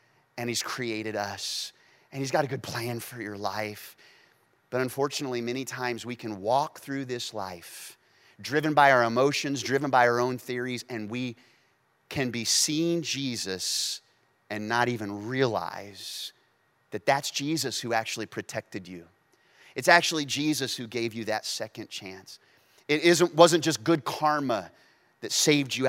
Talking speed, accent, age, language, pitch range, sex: 155 wpm, American, 30-49, English, 115-160 Hz, male